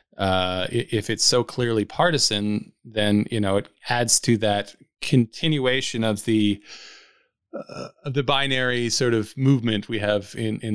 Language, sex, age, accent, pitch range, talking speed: English, male, 20-39, American, 105-130 Hz, 150 wpm